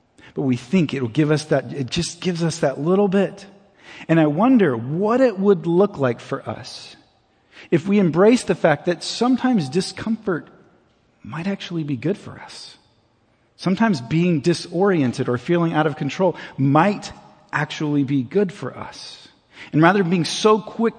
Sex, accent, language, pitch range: male, American, English, 130-180 Hz